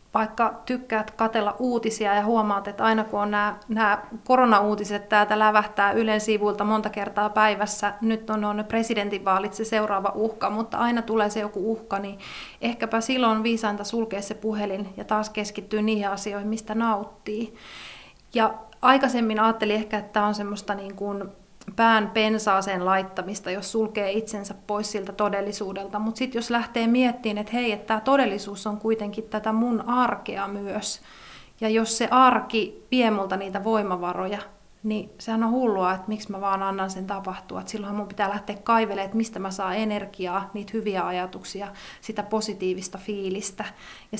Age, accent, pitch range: 30-49, native, 200-220 Hz